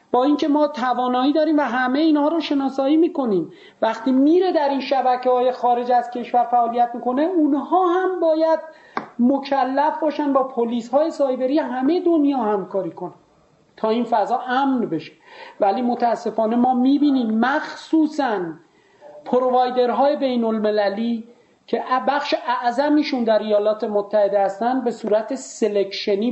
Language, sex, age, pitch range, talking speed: Persian, male, 40-59, 200-270 Hz, 130 wpm